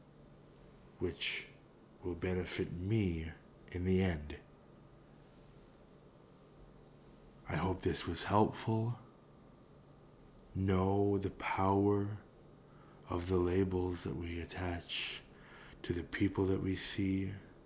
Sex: male